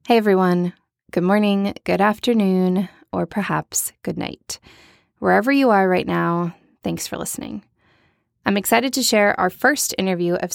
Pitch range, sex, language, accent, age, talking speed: 175-205 Hz, female, English, American, 20-39, 150 wpm